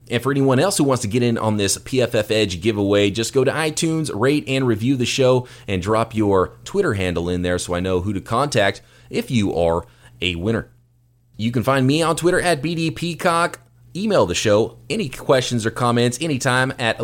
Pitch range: 110-140 Hz